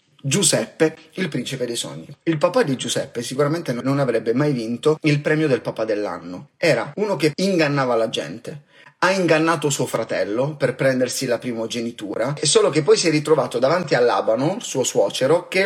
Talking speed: 175 wpm